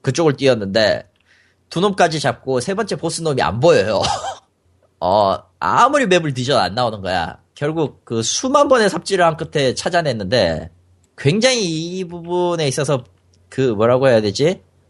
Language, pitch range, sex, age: Korean, 110-165 Hz, male, 30-49